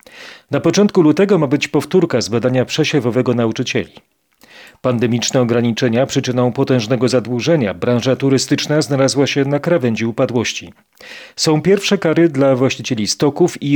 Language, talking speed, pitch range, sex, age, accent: Polish, 125 wpm, 120-155 Hz, male, 40-59, native